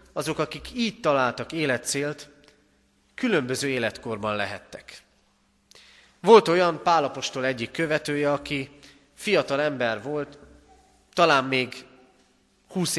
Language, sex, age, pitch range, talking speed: Hungarian, male, 30-49, 120-170 Hz, 90 wpm